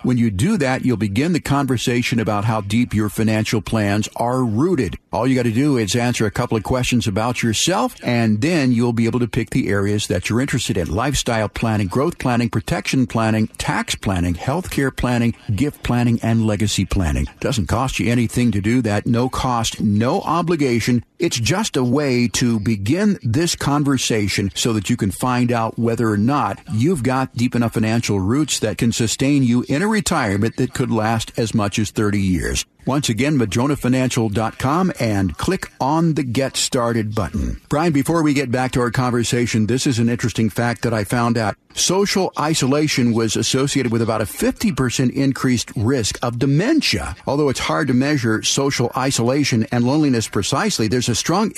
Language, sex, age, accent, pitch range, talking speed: English, male, 50-69, American, 110-135 Hz, 185 wpm